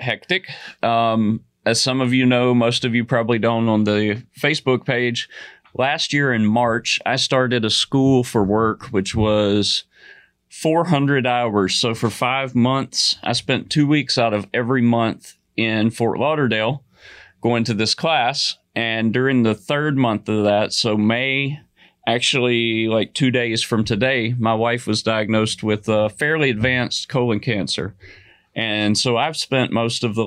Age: 30-49